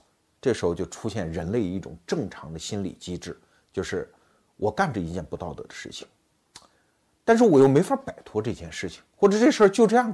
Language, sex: Chinese, male